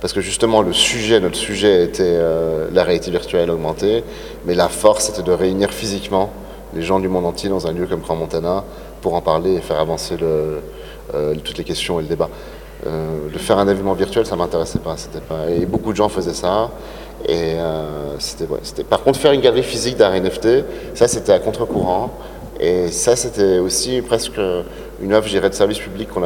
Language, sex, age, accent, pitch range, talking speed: French, male, 30-49, French, 85-105 Hz, 210 wpm